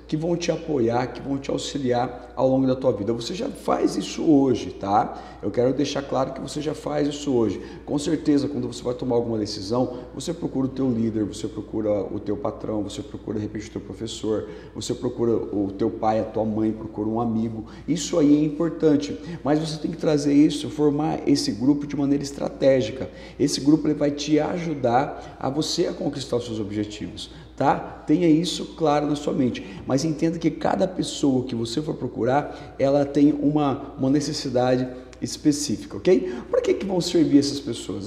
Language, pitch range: Portuguese, 115-155 Hz